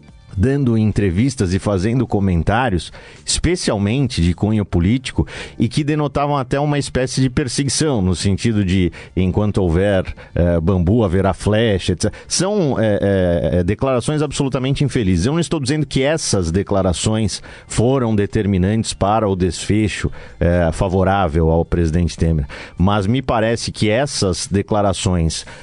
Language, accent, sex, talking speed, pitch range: Portuguese, Brazilian, male, 130 wpm, 90-115 Hz